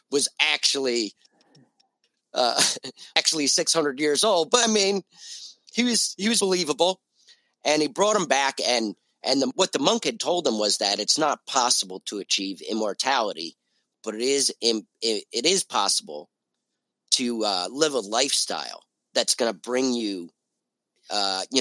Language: English